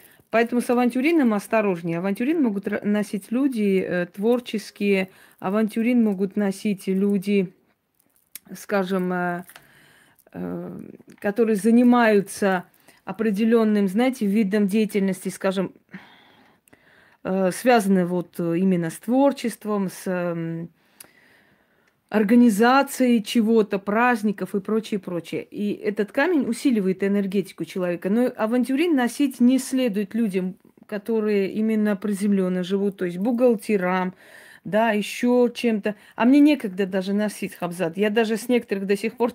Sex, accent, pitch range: female, native, 195-230 Hz